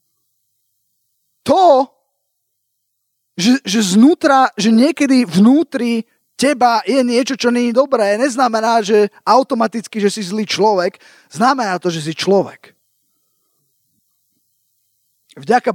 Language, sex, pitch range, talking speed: Slovak, male, 175-235 Hz, 105 wpm